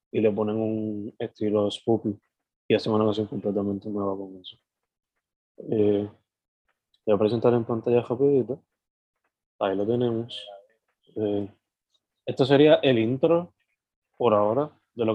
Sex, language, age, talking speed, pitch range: male, Spanish, 20-39, 135 wpm, 110-120 Hz